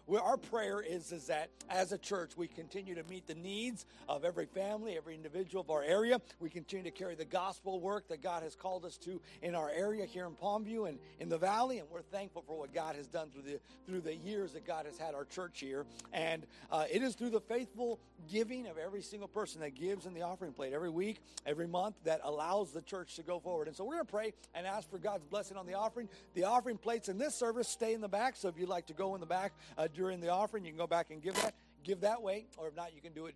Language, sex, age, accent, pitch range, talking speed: English, male, 50-69, American, 155-210 Hz, 270 wpm